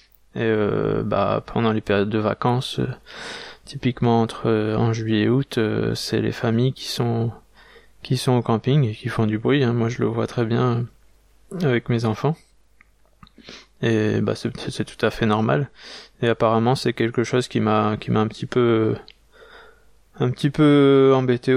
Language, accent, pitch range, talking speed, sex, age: French, French, 110-130 Hz, 180 wpm, male, 20-39